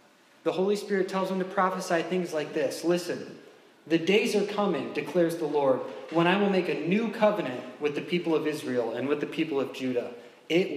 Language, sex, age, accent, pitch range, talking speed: English, male, 20-39, American, 130-175 Hz, 205 wpm